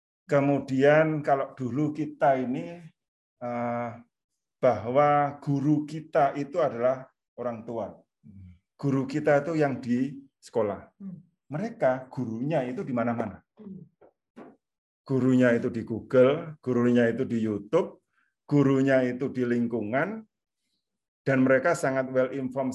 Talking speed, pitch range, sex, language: 105 wpm, 120-150 Hz, male, Indonesian